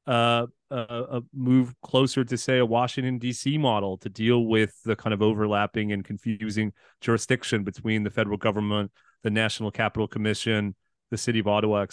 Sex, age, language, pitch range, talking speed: male, 30-49, English, 115-140 Hz, 170 wpm